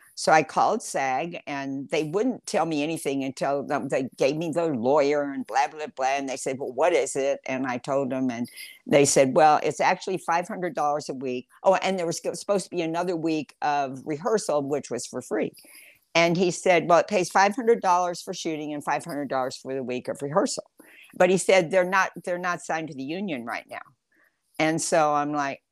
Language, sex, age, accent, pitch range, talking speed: English, female, 60-79, American, 140-185 Hz, 205 wpm